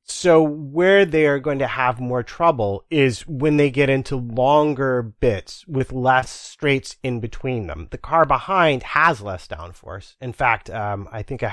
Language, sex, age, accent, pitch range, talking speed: English, male, 30-49, American, 115-155 Hz, 175 wpm